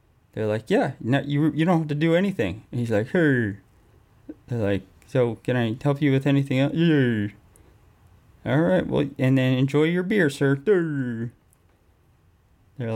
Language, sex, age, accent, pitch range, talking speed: English, male, 20-39, American, 105-130 Hz, 170 wpm